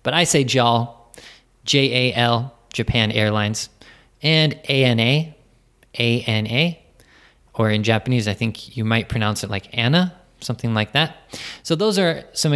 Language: Japanese